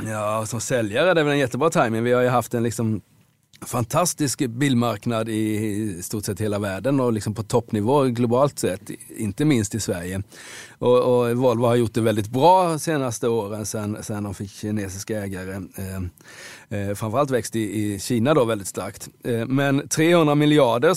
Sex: male